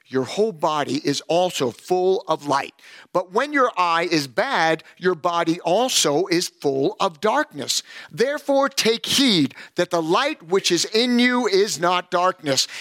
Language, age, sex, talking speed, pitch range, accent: English, 50-69, male, 160 wpm, 160-215 Hz, American